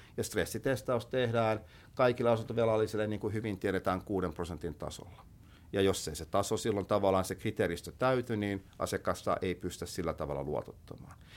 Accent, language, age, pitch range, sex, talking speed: native, Finnish, 50-69, 90-115 Hz, male, 155 wpm